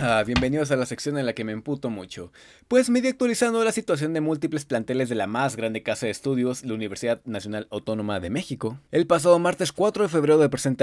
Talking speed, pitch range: 215 wpm, 125-185 Hz